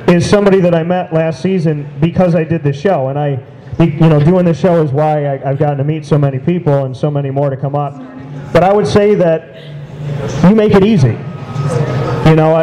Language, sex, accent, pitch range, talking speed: English, male, American, 140-170 Hz, 220 wpm